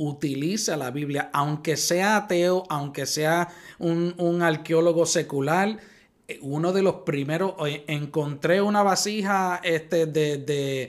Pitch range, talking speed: 140-175 Hz, 110 wpm